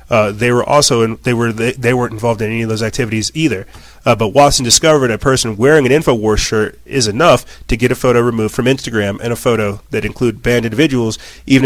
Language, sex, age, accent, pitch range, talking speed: English, male, 30-49, American, 110-135 Hz, 225 wpm